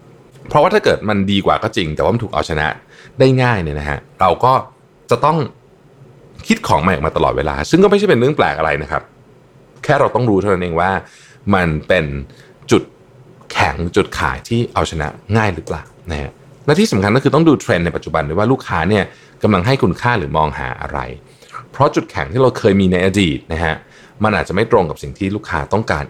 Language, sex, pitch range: Thai, male, 80-130 Hz